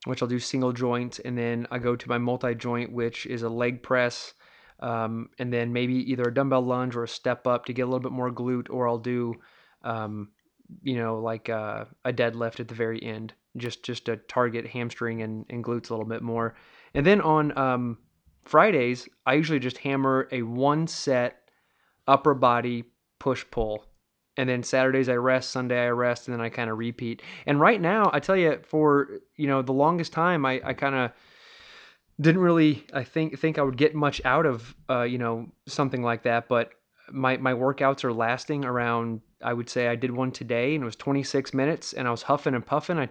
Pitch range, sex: 120-140 Hz, male